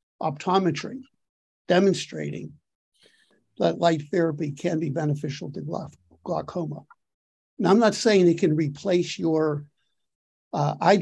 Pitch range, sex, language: 155-185 Hz, male, English